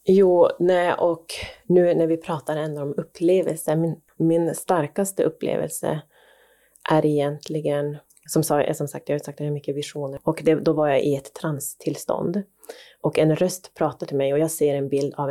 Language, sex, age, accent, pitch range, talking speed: Swedish, female, 30-49, native, 145-170 Hz, 180 wpm